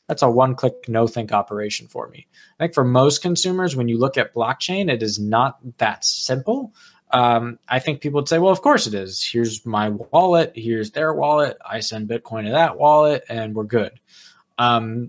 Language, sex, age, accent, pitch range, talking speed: English, male, 20-39, American, 115-155 Hz, 195 wpm